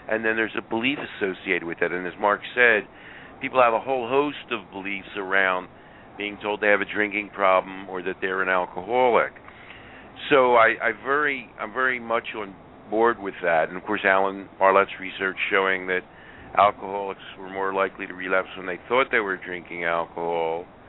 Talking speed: 185 wpm